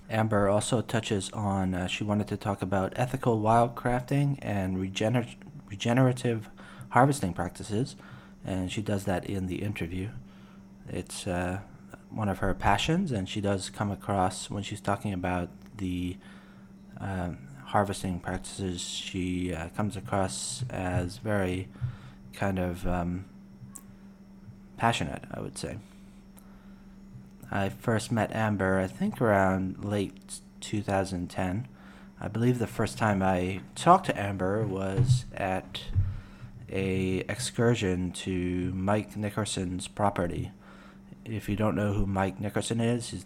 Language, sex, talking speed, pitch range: English, male, 125 wpm, 95-115 Hz